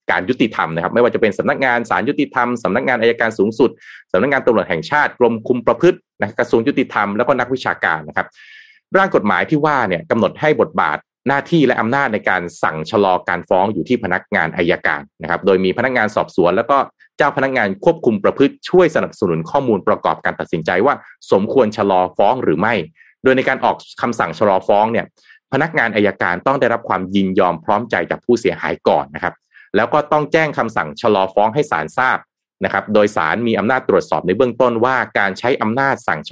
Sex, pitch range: male, 100-145 Hz